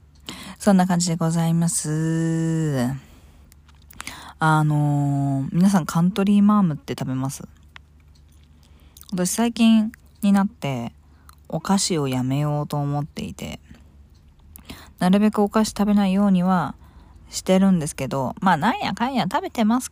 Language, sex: Japanese, female